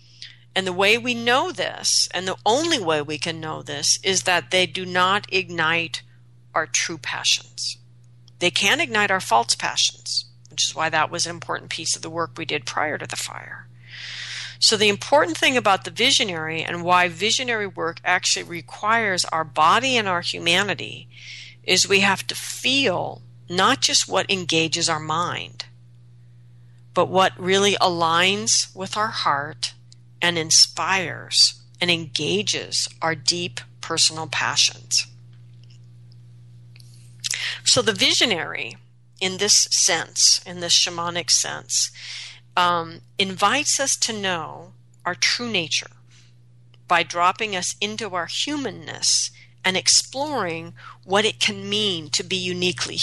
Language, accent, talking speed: English, American, 140 wpm